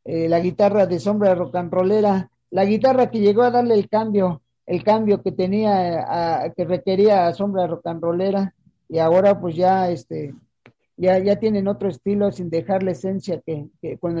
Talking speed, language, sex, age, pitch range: 175 wpm, English, male, 50-69, 180-205 Hz